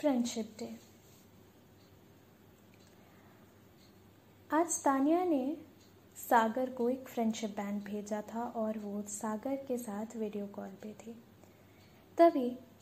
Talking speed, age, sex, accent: 105 wpm, 10-29, female, native